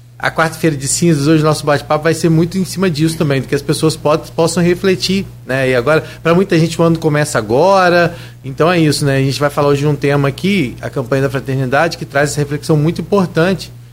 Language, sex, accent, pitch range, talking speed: Portuguese, male, Brazilian, 120-160 Hz, 235 wpm